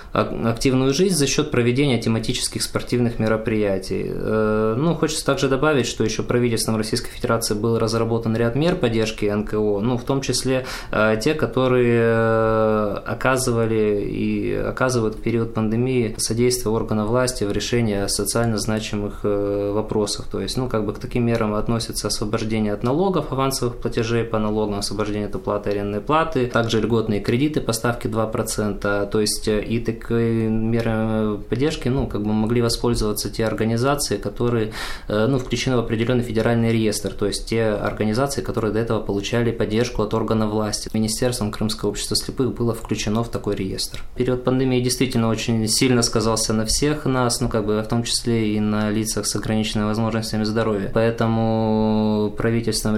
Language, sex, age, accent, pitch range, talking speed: Russian, male, 20-39, native, 105-120 Hz, 155 wpm